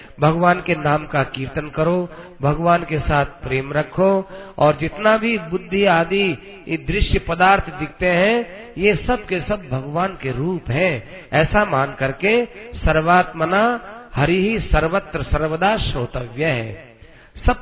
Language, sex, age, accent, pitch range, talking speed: Hindi, male, 50-69, native, 150-195 Hz, 135 wpm